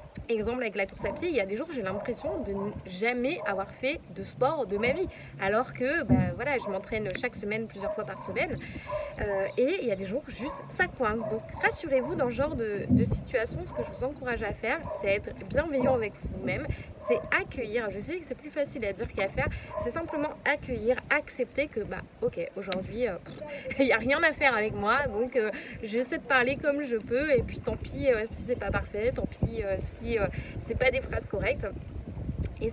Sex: female